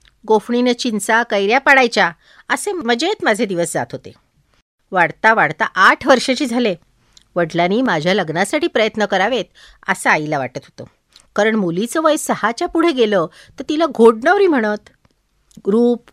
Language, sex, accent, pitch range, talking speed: Marathi, female, native, 175-265 Hz, 130 wpm